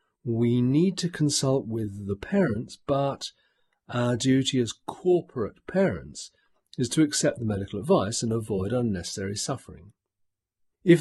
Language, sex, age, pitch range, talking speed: English, male, 50-69, 100-135 Hz, 130 wpm